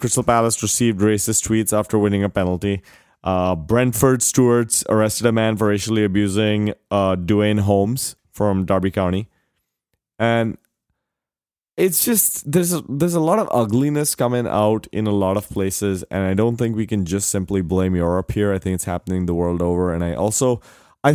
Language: English